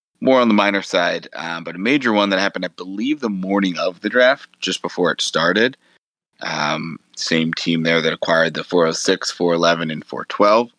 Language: English